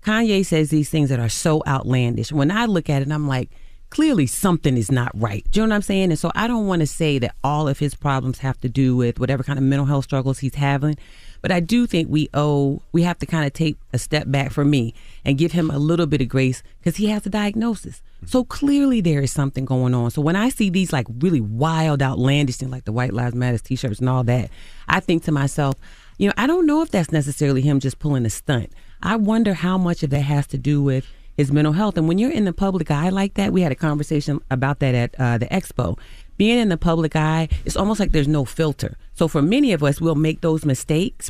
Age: 30-49